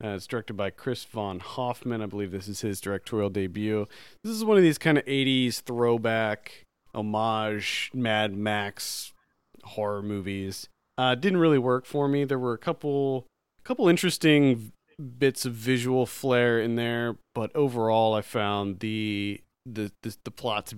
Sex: male